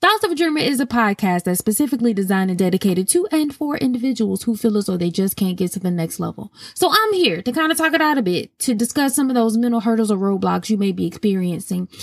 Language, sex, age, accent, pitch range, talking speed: English, female, 20-39, American, 195-250 Hz, 260 wpm